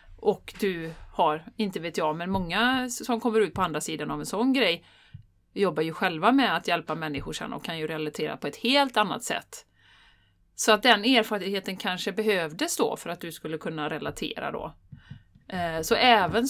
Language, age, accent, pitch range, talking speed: Swedish, 30-49, native, 160-220 Hz, 180 wpm